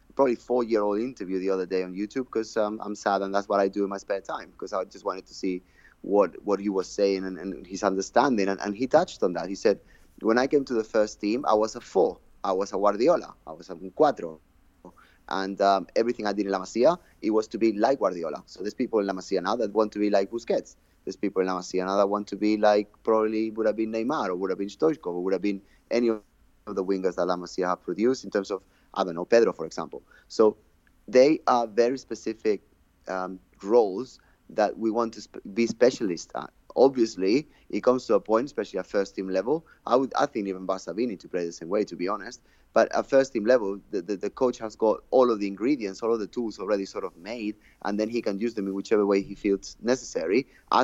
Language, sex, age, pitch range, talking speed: English, male, 30-49, 95-115 Hz, 245 wpm